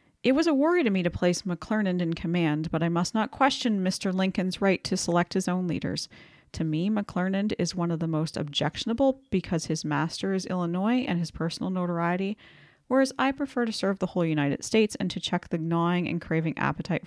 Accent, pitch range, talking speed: American, 155-185 Hz, 205 wpm